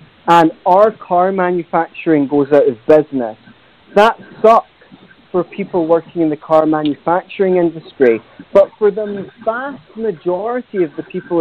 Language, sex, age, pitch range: English, male, 40-59, 160-210 Hz